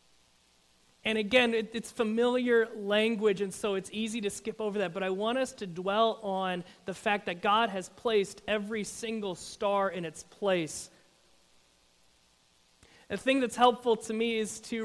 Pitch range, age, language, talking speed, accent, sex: 160-220 Hz, 30-49, English, 165 wpm, American, male